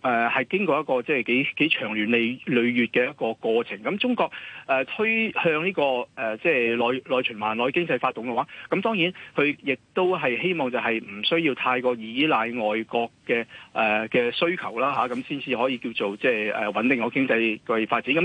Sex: male